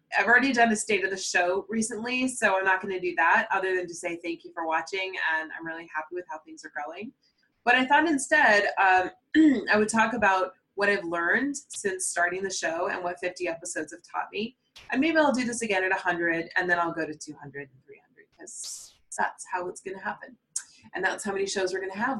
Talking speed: 240 wpm